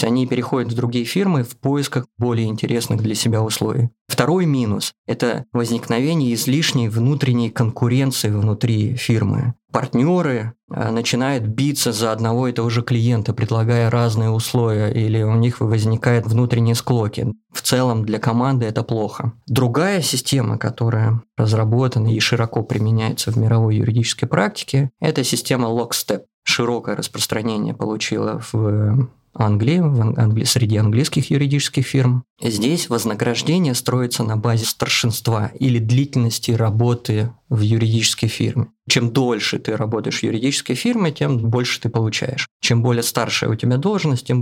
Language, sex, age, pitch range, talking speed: Russian, male, 20-39, 115-135 Hz, 135 wpm